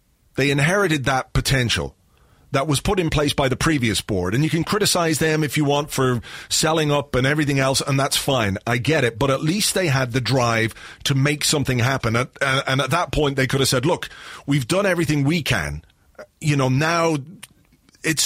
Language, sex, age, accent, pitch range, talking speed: English, male, 40-59, British, 125-155 Hz, 205 wpm